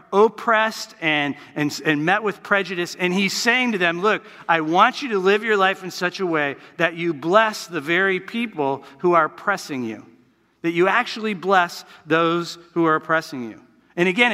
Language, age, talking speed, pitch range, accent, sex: English, 50-69, 185 wpm, 165-215 Hz, American, male